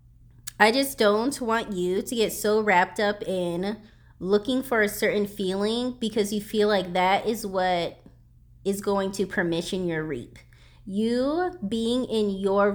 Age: 20-39